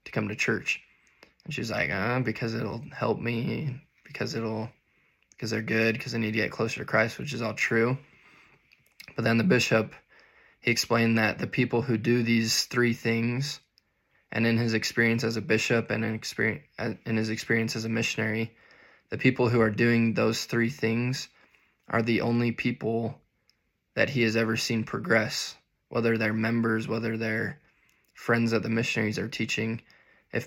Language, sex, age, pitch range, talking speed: English, male, 20-39, 110-120 Hz, 175 wpm